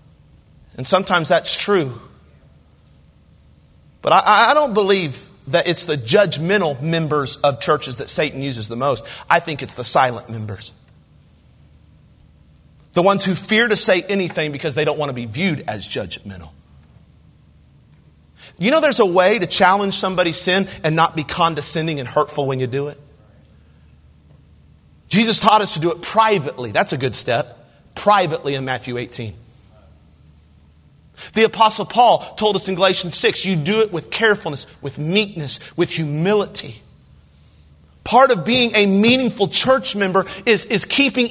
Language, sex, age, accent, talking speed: English, male, 40-59, American, 150 wpm